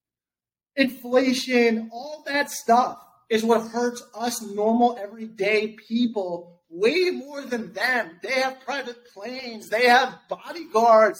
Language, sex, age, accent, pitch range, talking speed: English, male, 30-49, American, 215-270 Hz, 120 wpm